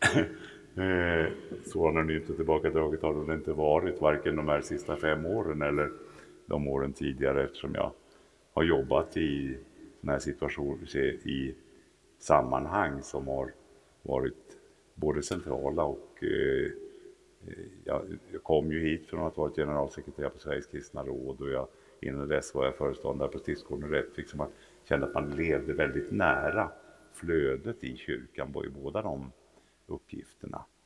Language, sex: Swedish, male